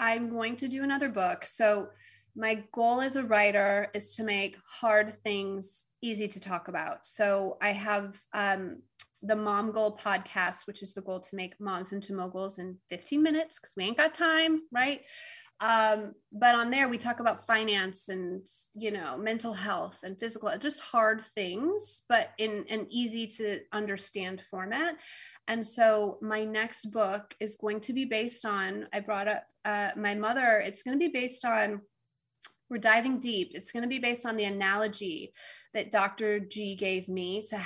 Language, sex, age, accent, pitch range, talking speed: English, female, 30-49, American, 200-240 Hz, 180 wpm